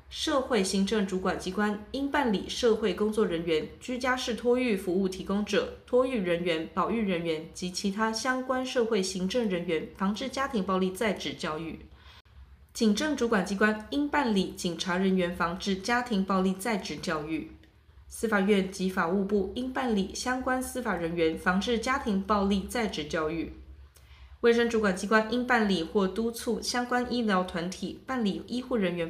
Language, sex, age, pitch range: Chinese, female, 20-39, 175-235 Hz